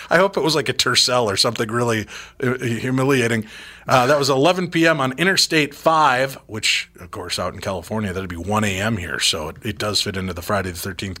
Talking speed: 210 wpm